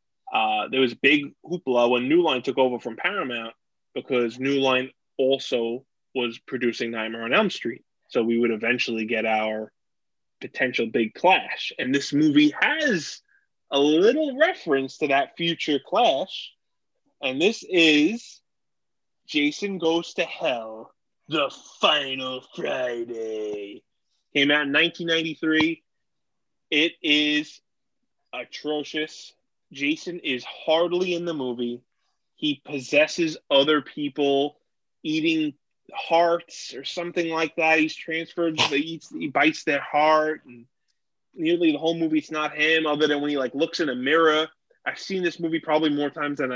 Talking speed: 140 wpm